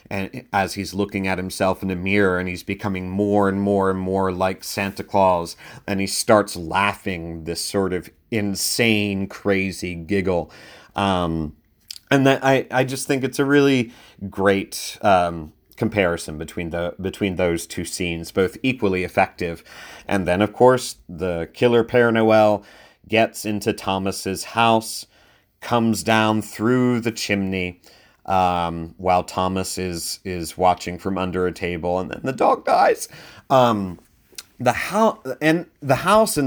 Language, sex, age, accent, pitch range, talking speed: English, male, 30-49, American, 95-120 Hz, 150 wpm